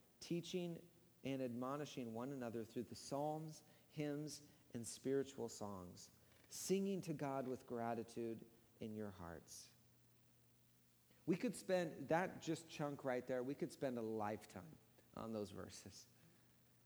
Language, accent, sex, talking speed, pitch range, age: English, American, male, 130 wpm, 115-160 Hz, 40-59